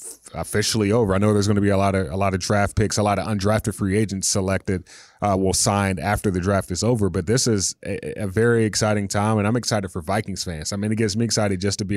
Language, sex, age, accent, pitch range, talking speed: English, male, 20-39, American, 100-125 Hz, 270 wpm